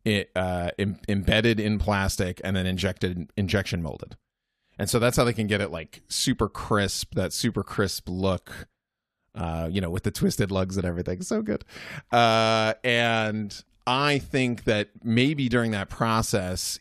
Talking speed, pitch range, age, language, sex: 170 wpm, 90-115 Hz, 30-49, English, male